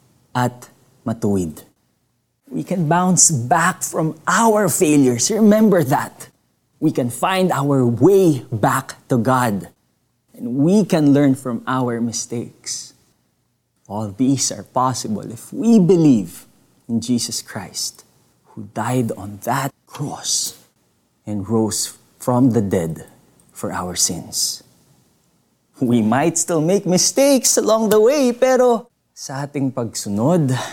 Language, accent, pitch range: Filipino, native, 110-155 Hz